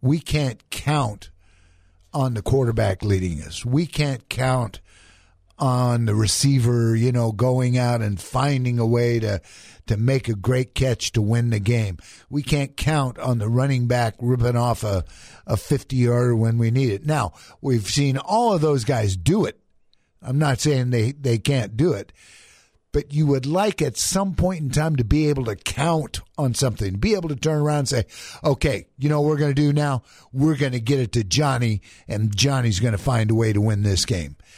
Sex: male